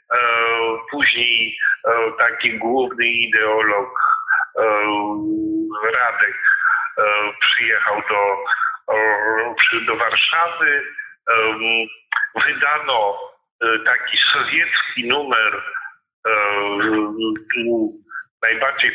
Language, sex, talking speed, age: Polish, male, 45 wpm, 40-59